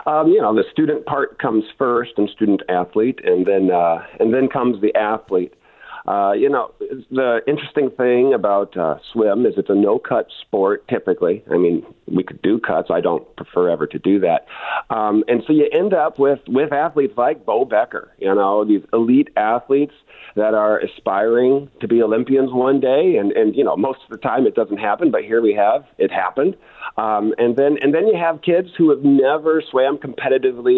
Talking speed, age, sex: 195 wpm, 50-69, male